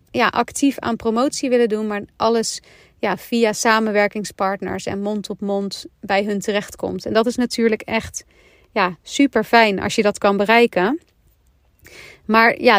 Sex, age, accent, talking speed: female, 40-59, Dutch, 145 wpm